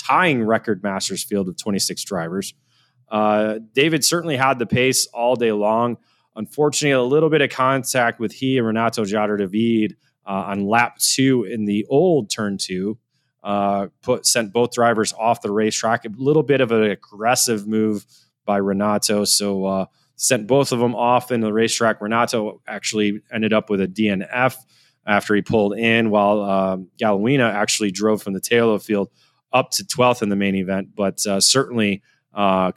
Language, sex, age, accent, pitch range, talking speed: English, male, 20-39, American, 100-125 Hz, 180 wpm